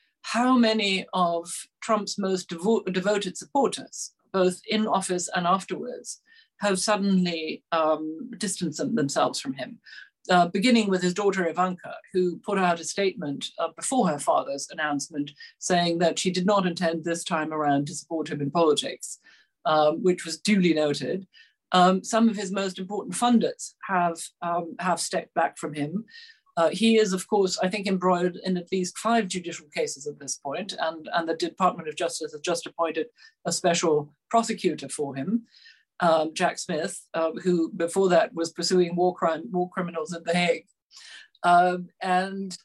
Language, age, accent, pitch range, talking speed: English, 50-69, British, 170-205 Hz, 165 wpm